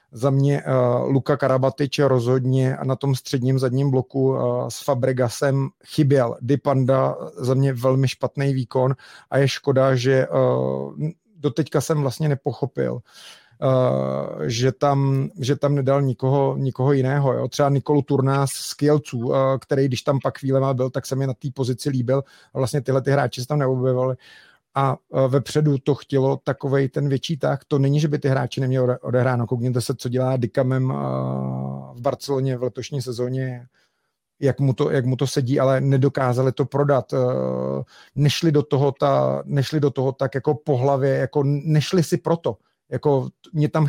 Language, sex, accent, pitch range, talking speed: Czech, male, native, 130-145 Hz, 170 wpm